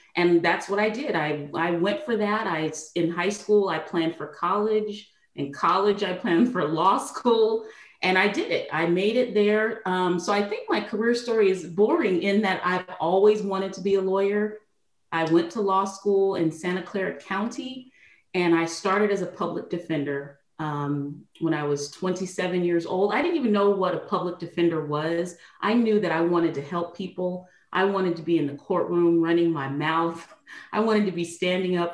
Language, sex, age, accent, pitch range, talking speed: English, female, 30-49, American, 165-205 Hz, 200 wpm